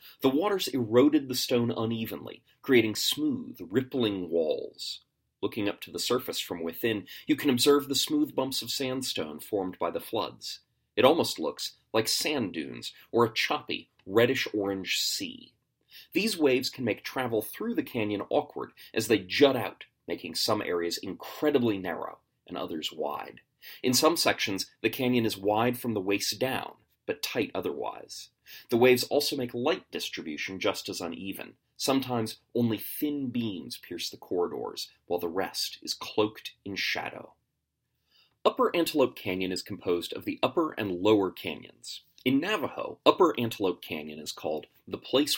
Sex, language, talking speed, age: male, English, 155 wpm, 30-49